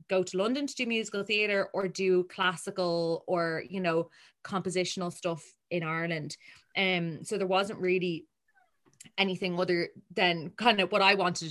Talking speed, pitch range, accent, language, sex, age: 165 wpm, 170-195 Hz, Irish, English, female, 20-39